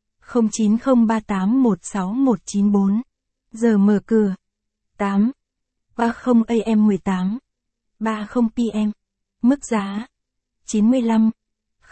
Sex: female